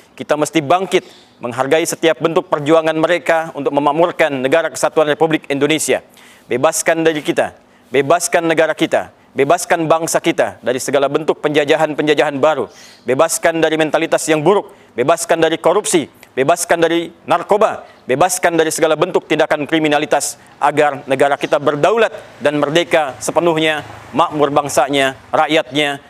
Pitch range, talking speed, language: 145-170 Hz, 125 wpm, Indonesian